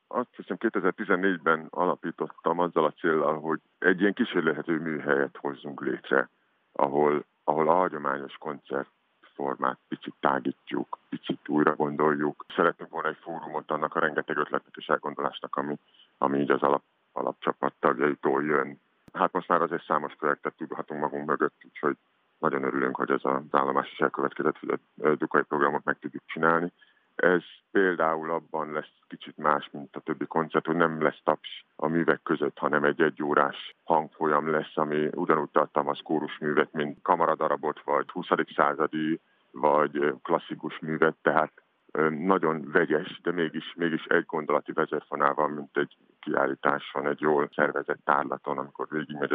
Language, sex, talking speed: Hungarian, male, 145 wpm